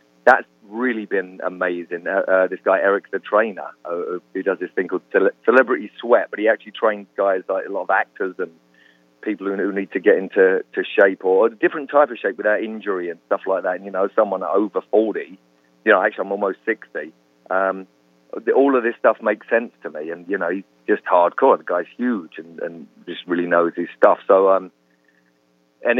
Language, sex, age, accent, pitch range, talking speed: English, male, 40-59, British, 85-120 Hz, 210 wpm